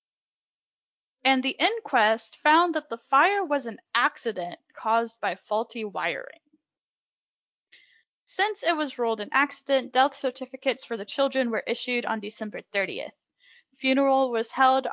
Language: English